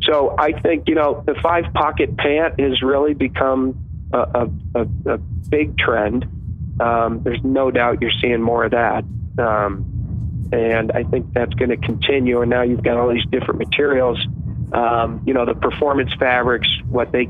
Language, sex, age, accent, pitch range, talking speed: English, male, 40-59, American, 115-135 Hz, 170 wpm